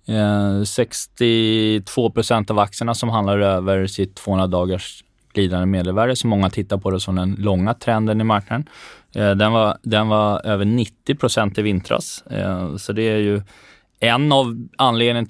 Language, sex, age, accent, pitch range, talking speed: Swedish, male, 20-39, native, 100-115 Hz, 140 wpm